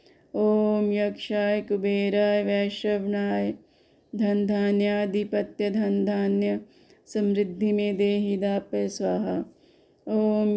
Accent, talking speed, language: native, 70 wpm, Hindi